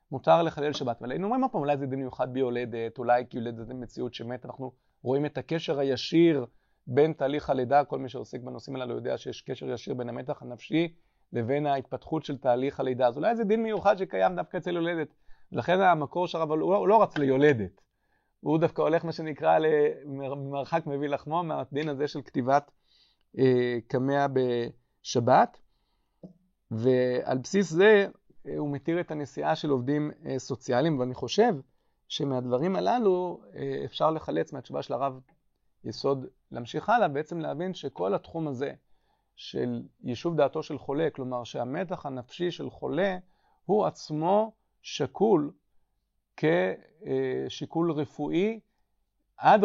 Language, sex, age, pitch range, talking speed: Hebrew, male, 40-59, 130-165 Hz, 145 wpm